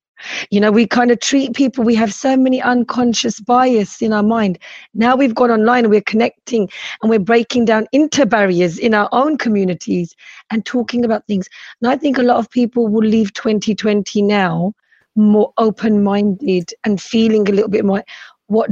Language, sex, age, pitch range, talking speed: Punjabi, female, 30-49, 205-240 Hz, 185 wpm